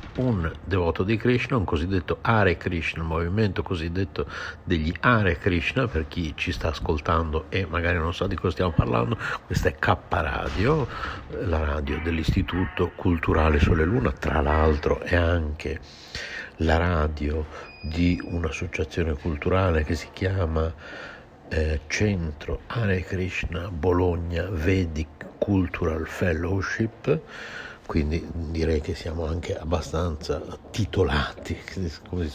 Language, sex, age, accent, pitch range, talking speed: Italian, male, 60-79, native, 80-95 Hz, 125 wpm